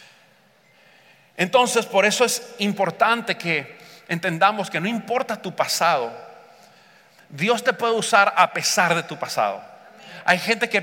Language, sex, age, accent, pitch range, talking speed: English, male, 40-59, Mexican, 155-205 Hz, 135 wpm